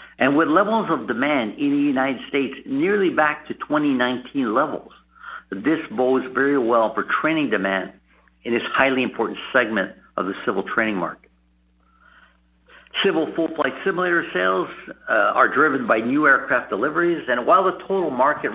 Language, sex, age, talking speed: English, male, 60-79, 150 wpm